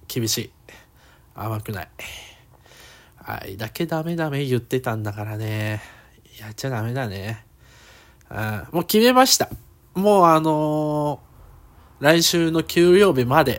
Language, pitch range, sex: Japanese, 110-165 Hz, male